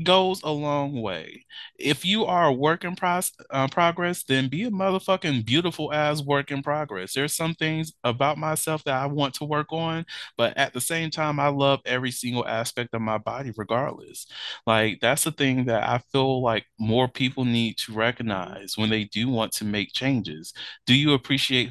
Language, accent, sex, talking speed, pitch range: English, American, male, 195 wpm, 105-140 Hz